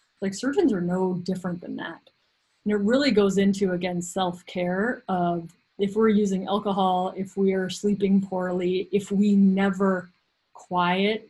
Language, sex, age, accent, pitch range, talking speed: English, female, 30-49, American, 180-210 Hz, 150 wpm